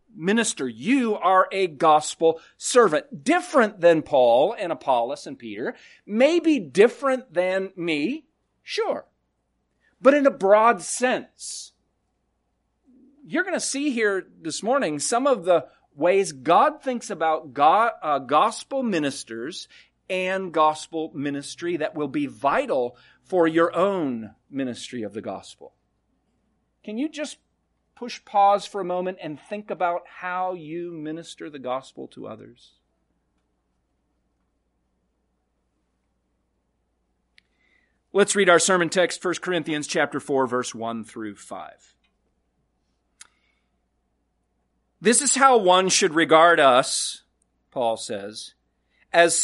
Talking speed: 115 wpm